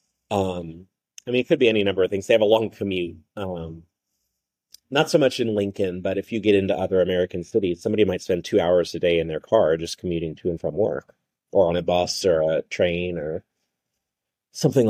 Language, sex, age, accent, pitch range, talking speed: English, male, 30-49, American, 90-110 Hz, 220 wpm